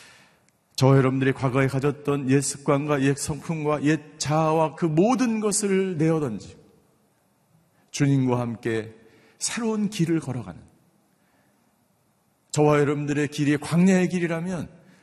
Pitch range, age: 130-190 Hz, 40-59